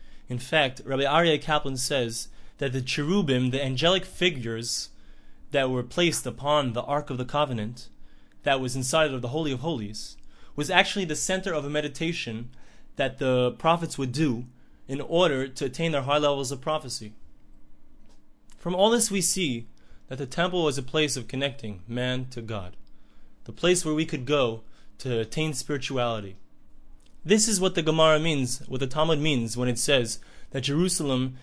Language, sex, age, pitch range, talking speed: English, male, 20-39, 125-160 Hz, 170 wpm